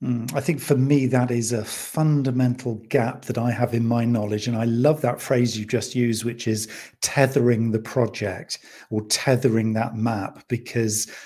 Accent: British